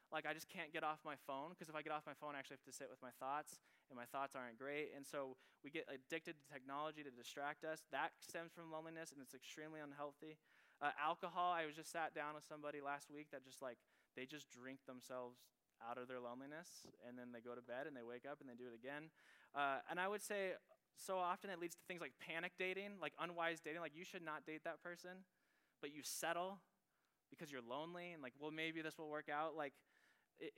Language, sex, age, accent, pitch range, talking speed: English, male, 10-29, American, 135-170 Hz, 240 wpm